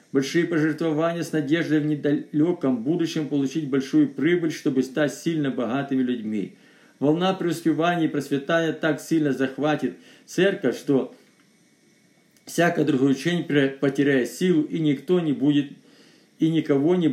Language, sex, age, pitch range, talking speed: Russian, male, 50-69, 135-170 Hz, 125 wpm